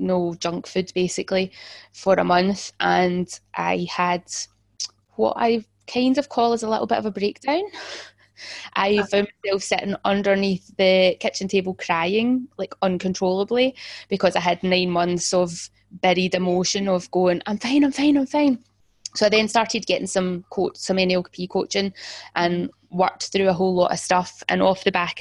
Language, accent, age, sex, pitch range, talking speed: English, British, 10-29, female, 180-210 Hz, 170 wpm